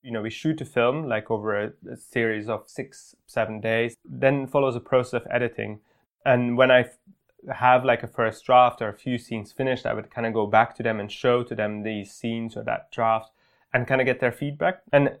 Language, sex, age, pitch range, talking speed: English, male, 20-39, 115-135 Hz, 235 wpm